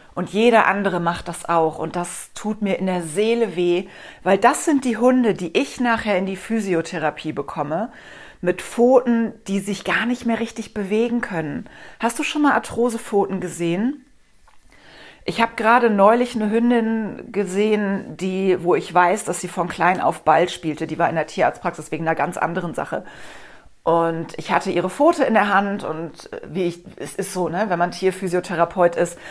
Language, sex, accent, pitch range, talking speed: German, female, German, 170-210 Hz, 180 wpm